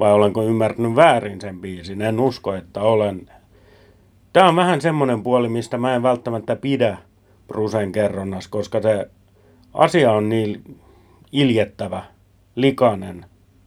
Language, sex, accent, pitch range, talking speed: Finnish, male, native, 100-125 Hz, 125 wpm